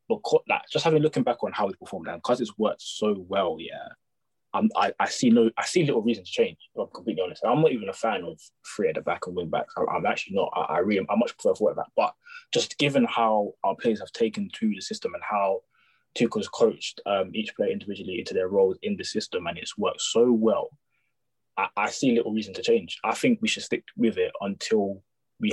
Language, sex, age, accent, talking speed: English, male, 20-39, British, 235 wpm